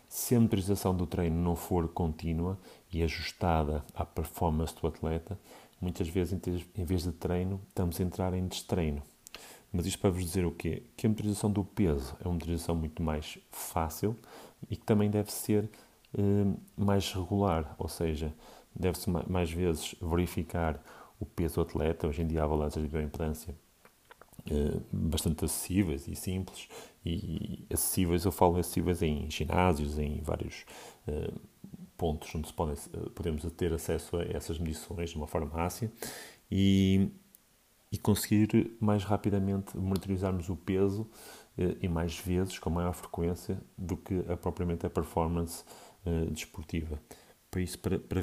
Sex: male